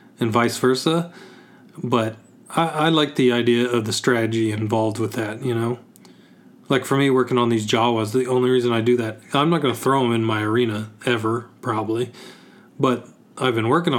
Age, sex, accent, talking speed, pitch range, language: 30-49, male, American, 195 wpm, 115-135 Hz, English